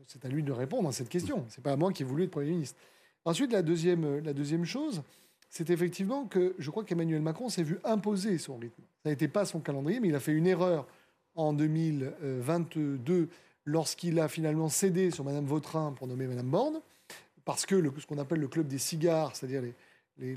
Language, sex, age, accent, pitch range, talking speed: French, male, 30-49, French, 145-180 Hz, 220 wpm